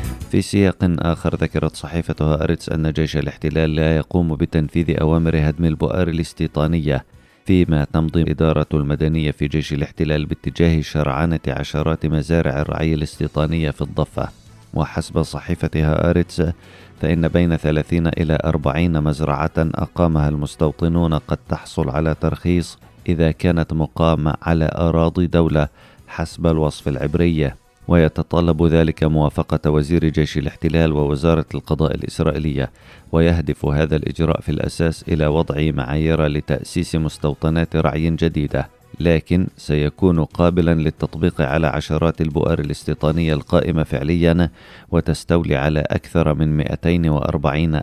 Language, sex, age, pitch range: Arabic, male, 30-49, 75-85 Hz